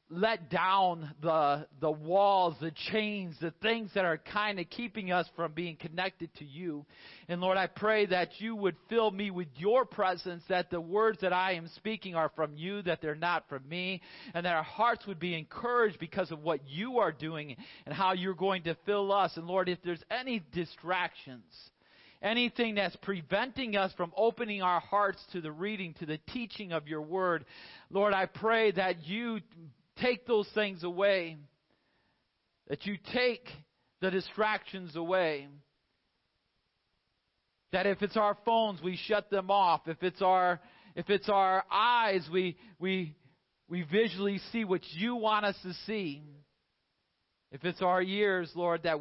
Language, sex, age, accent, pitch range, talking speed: English, male, 40-59, American, 160-200 Hz, 170 wpm